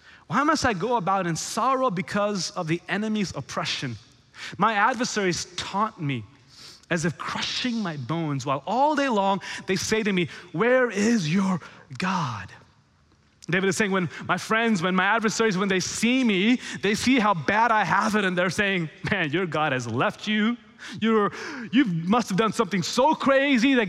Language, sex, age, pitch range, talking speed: English, male, 20-39, 145-215 Hz, 175 wpm